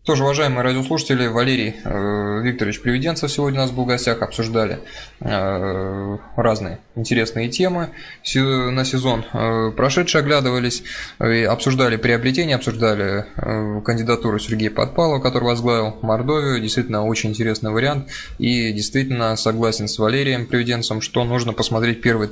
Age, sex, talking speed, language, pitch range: 20-39, male, 130 wpm, Russian, 110-130 Hz